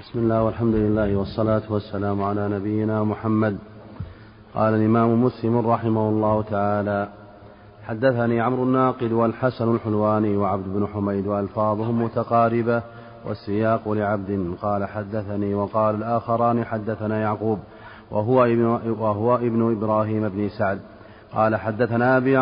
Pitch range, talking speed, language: 105-115 Hz, 120 wpm, Arabic